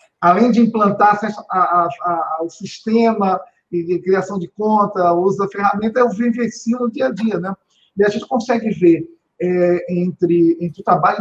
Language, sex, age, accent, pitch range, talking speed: Portuguese, male, 50-69, Brazilian, 180-240 Hz, 185 wpm